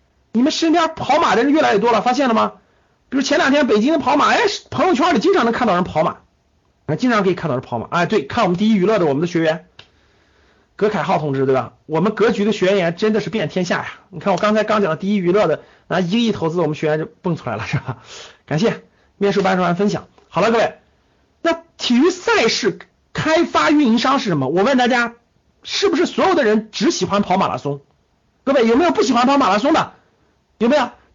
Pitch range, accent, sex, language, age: 200-320 Hz, native, male, Chinese, 50-69